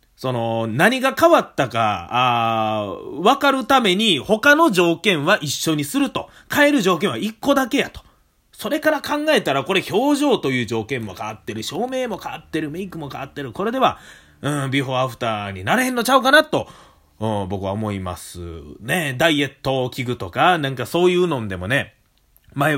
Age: 30-49